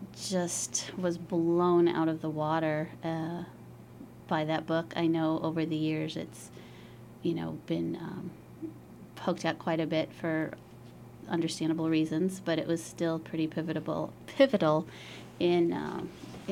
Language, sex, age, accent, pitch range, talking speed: English, female, 30-49, American, 155-175 Hz, 140 wpm